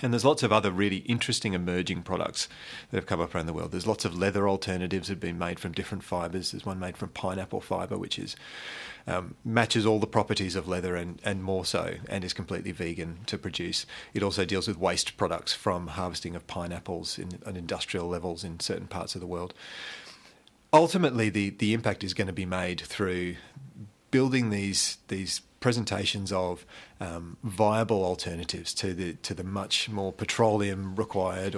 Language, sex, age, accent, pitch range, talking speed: English, male, 30-49, Australian, 90-110 Hz, 190 wpm